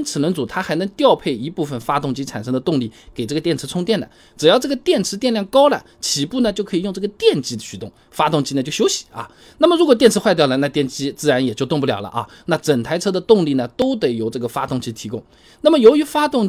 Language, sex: Chinese, male